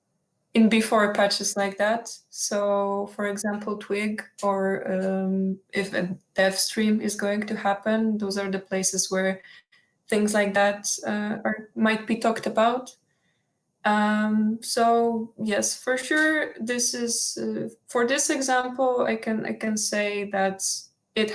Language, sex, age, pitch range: English, female, 20-39, 195-225 Hz